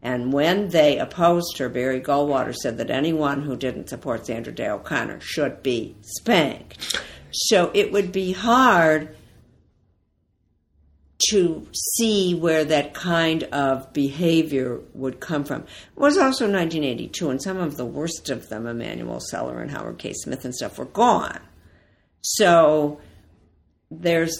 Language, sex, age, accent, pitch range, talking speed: English, female, 60-79, American, 120-165 Hz, 140 wpm